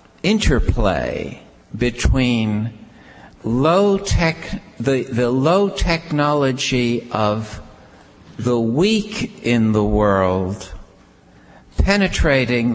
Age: 60-79